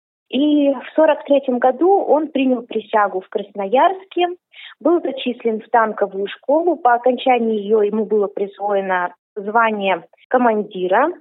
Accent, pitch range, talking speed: native, 215-275 Hz, 125 wpm